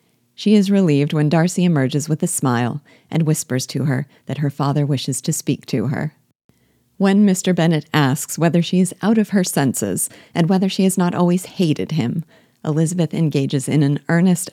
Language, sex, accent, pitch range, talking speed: English, female, American, 135-170 Hz, 185 wpm